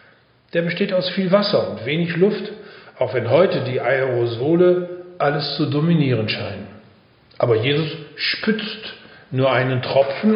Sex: male